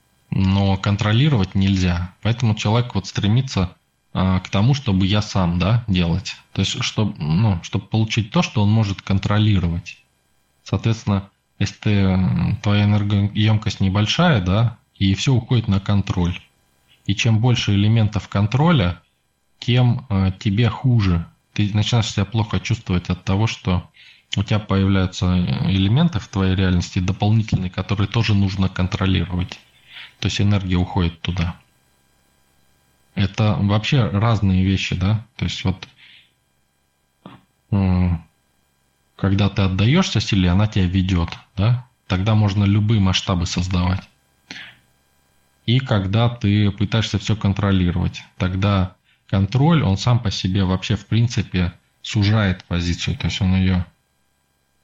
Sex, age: male, 20-39